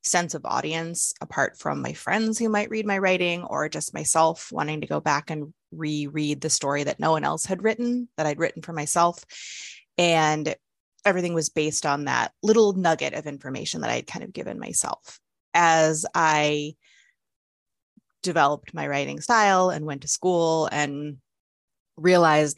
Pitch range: 155-200 Hz